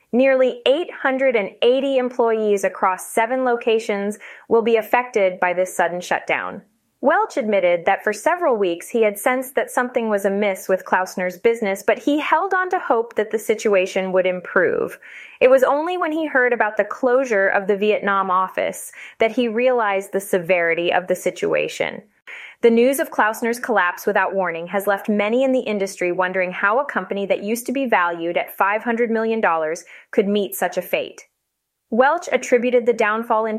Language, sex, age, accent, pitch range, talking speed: English, female, 20-39, American, 195-255 Hz, 170 wpm